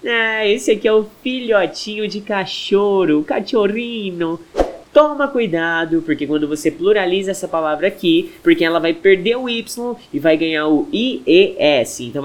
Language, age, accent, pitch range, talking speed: Portuguese, 20-39, Brazilian, 160-245 Hz, 155 wpm